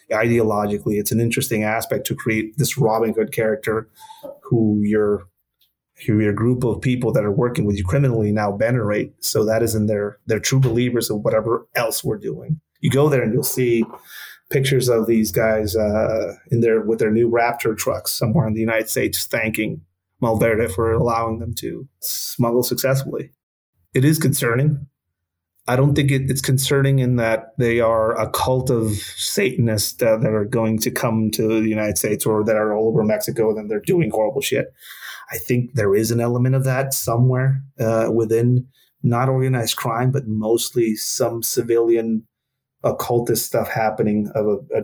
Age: 30-49